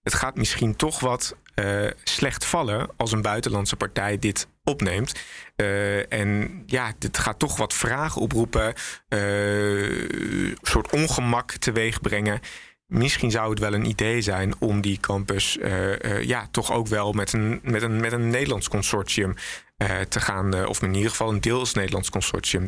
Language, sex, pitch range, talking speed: Dutch, male, 100-115 Hz, 170 wpm